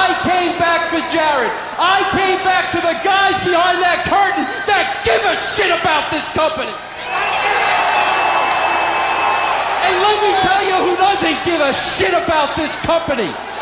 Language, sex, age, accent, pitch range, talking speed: English, male, 40-59, American, 340-390 Hz, 150 wpm